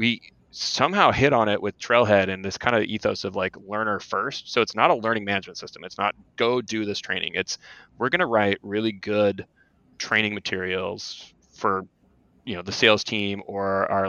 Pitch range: 95-110 Hz